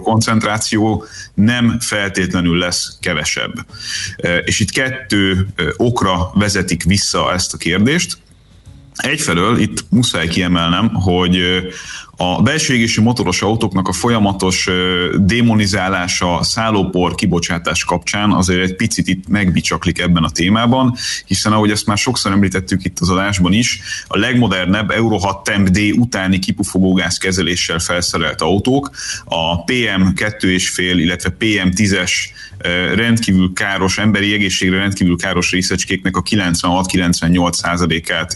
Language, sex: Hungarian, male